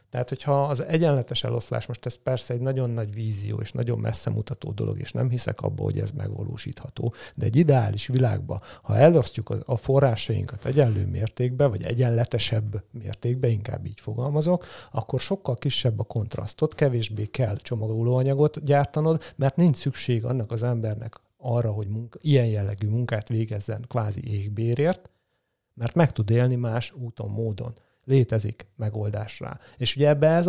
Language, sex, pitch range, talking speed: Hungarian, male, 115-135 Hz, 150 wpm